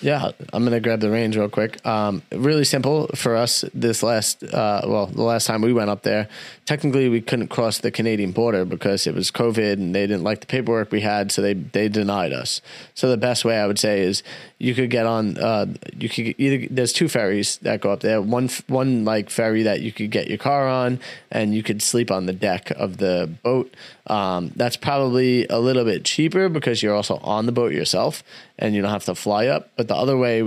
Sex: male